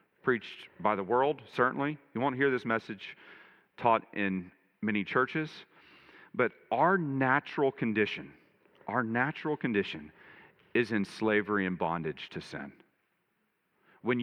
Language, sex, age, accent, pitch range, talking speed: English, male, 40-59, American, 105-135 Hz, 120 wpm